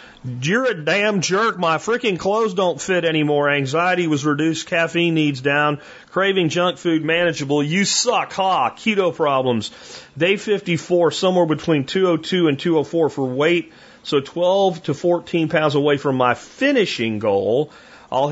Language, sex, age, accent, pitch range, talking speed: English, male, 40-59, American, 140-185 Hz, 145 wpm